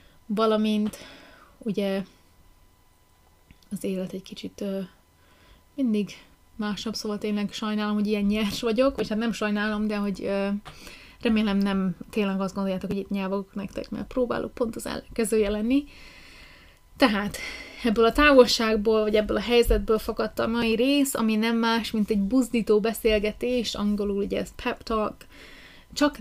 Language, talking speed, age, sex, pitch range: Hungarian, 145 wpm, 20-39, female, 200-225 Hz